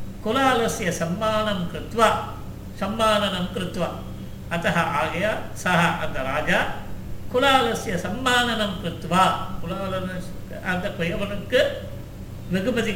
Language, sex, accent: Tamil, male, native